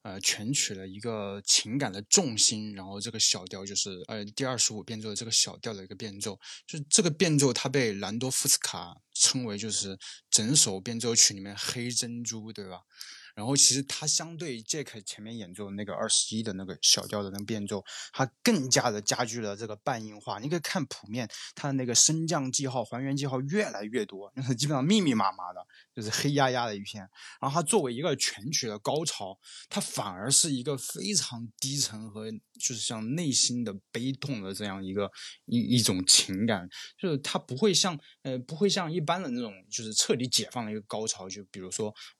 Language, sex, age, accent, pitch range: Chinese, male, 20-39, native, 105-140 Hz